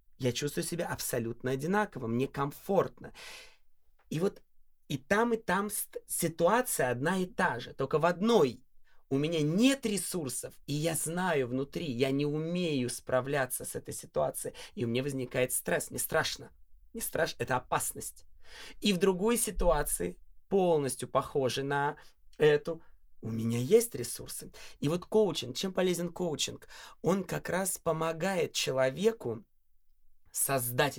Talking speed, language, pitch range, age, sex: 140 wpm, Russian, 130-185 Hz, 20-39, male